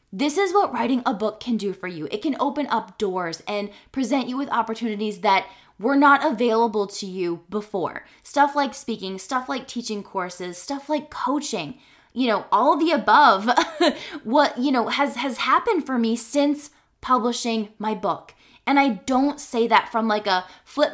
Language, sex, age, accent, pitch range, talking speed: English, female, 20-39, American, 215-280 Hz, 180 wpm